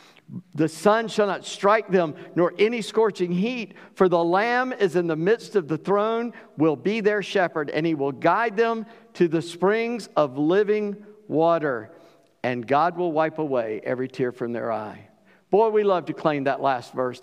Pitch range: 165-230 Hz